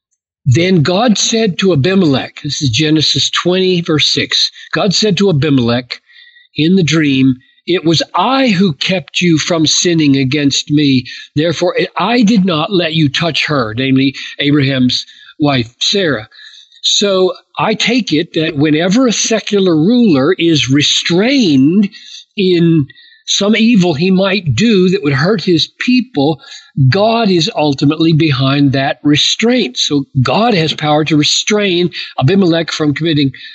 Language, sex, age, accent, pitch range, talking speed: English, male, 50-69, American, 145-200 Hz, 140 wpm